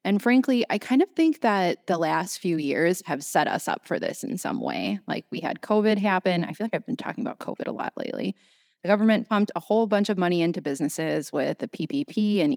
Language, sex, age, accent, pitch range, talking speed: English, female, 20-39, American, 165-215 Hz, 240 wpm